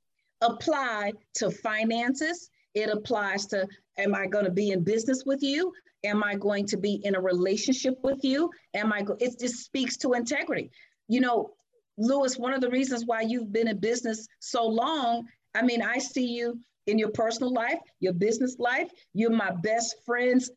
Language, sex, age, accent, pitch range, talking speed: English, female, 40-59, American, 210-275 Hz, 185 wpm